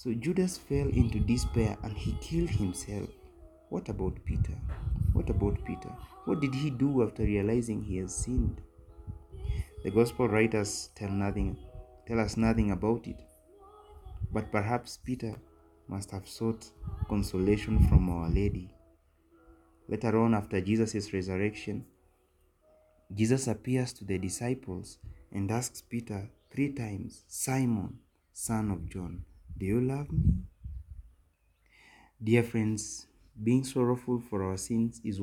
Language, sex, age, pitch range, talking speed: English, male, 30-49, 90-115 Hz, 125 wpm